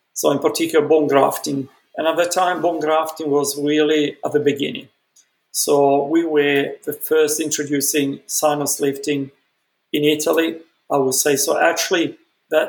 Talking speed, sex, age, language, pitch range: 150 wpm, male, 40-59, English, 140-160 Hz